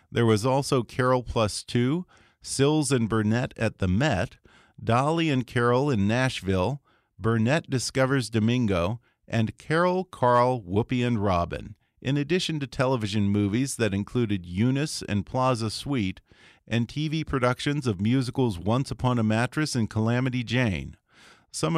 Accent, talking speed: American, 140 wpm